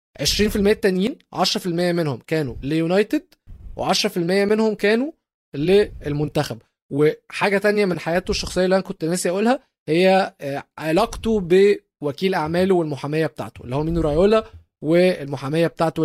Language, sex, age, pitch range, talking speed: Arabic, male, 20-39, 135-180 Hz, 120 wpm